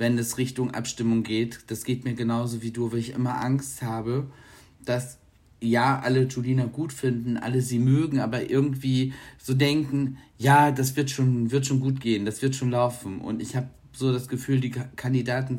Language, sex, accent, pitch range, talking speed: German, male, German, 115-130 Hz, 190 wpm